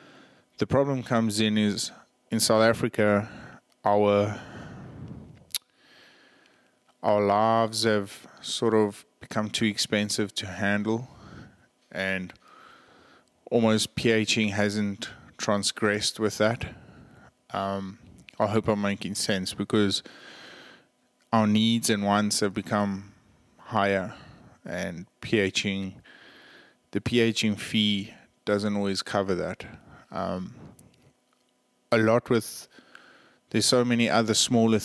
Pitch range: 100-110 Hz